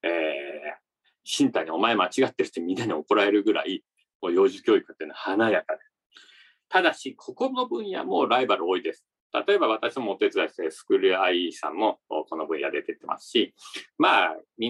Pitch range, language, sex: 300-405 Hz, Japanese, male